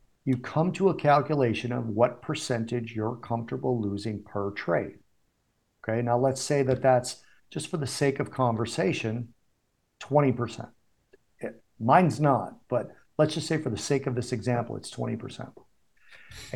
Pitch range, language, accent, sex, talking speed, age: 115-145 Hz, English, American, male, 145 wpm, 50-69